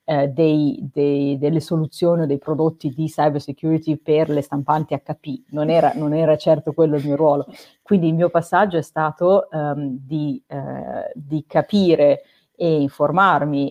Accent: native